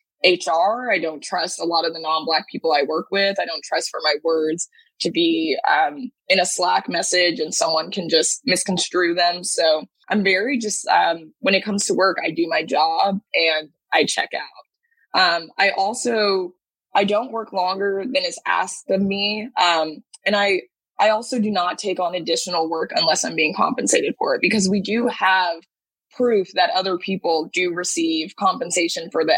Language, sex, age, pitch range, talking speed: English, female, 20-39, 170-225 Hz, 190 wpm